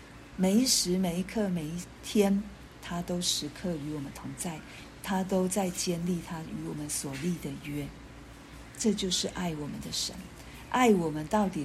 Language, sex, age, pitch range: Chinese, female, 50-69, 160-190 Hz